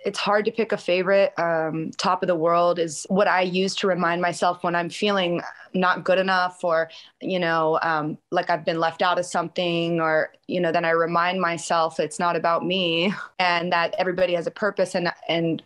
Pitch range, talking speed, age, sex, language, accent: 165-190 Hz, 205 wpm, 20-39, female, English, American